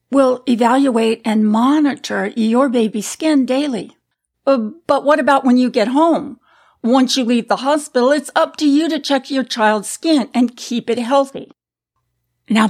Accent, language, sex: American, English, female